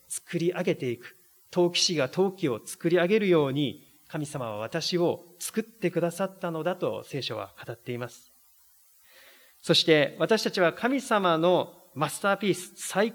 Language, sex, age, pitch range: Japanese, male, 40-59, 140-205 Hz